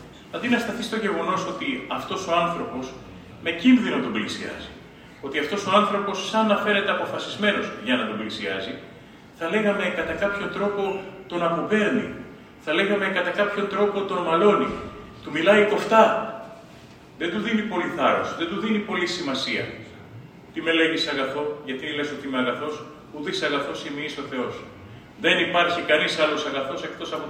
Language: Greek